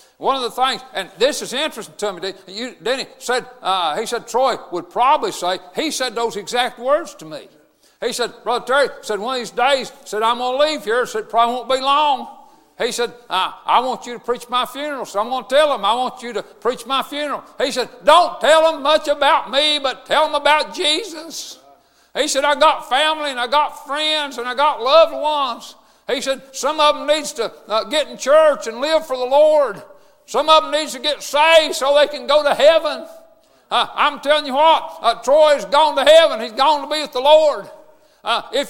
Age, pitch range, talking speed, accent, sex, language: 60-79, 250-295 Hz, 220 wpm, American, male, English